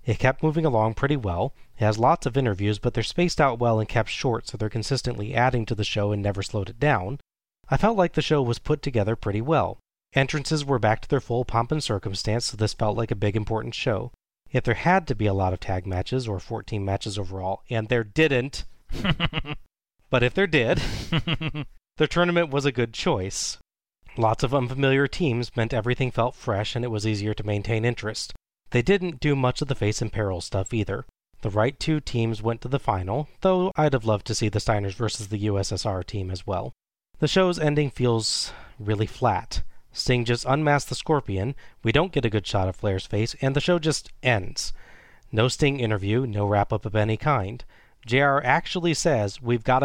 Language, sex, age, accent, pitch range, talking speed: English, male, 30-49, American, 110-140 Hz, 205 wpm